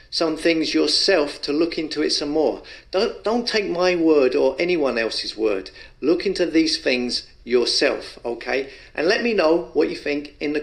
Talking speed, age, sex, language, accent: 185 wpm, 50-69, male, English, British